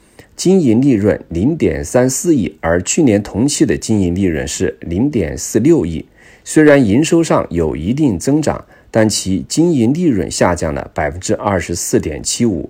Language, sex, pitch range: Chinese, male, 90-130 Hz